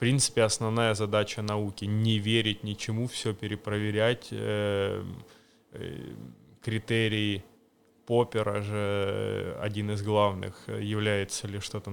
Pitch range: 105-140 Hz